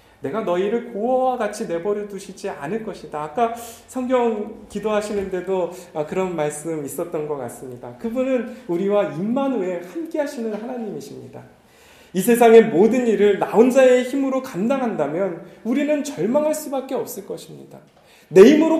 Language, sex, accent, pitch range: Korean, male, native, 180-255 Hz